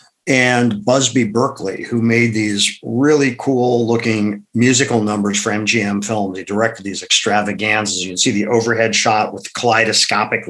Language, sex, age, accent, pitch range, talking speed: English, male, 50-69, American, 105-120 Hz, 145 wpm